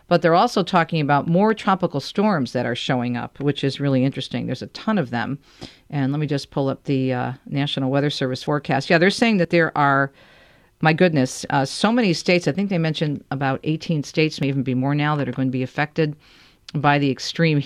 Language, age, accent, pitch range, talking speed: English, 50-69, American, 135-170 Hz, 225 wpm